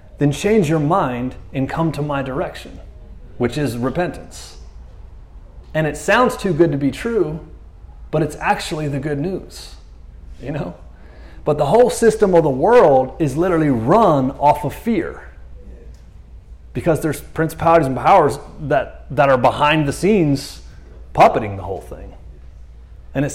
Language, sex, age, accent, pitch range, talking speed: English, male, 30-49, American, 115-155 Hz, 150 wpm